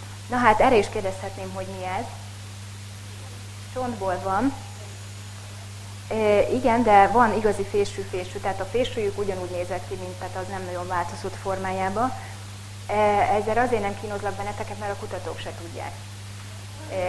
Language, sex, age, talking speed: English, female, 20-39, 140 wpm